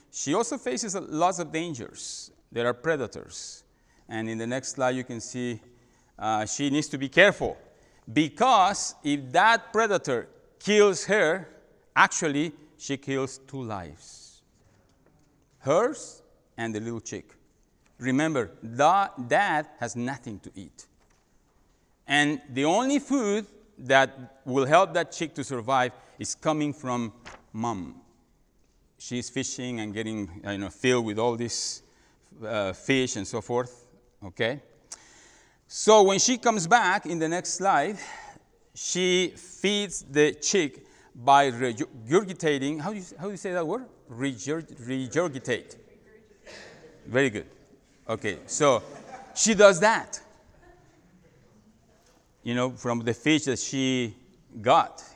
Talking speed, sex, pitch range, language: 130 wpm, male, 120-170 Hz, English